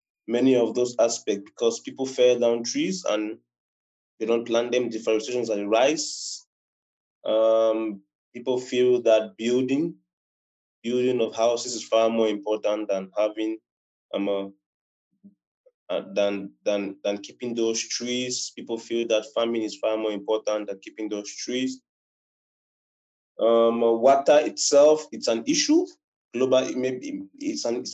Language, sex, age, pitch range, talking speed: English, male, 20-39, 105-130 Hz, 135 wpm